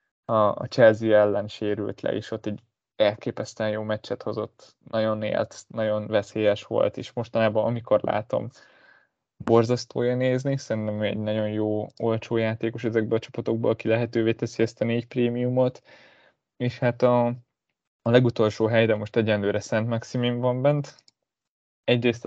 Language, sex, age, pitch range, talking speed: Hungarian, male, 20-39, 105-120 Hz, 145 wpm